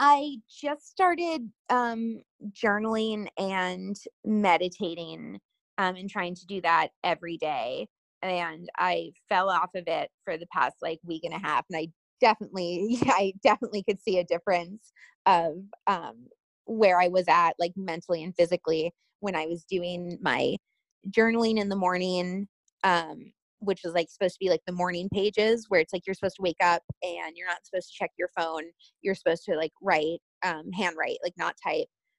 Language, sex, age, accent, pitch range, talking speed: English, female, 20-39, American, 175-210 Hz, 175 wpm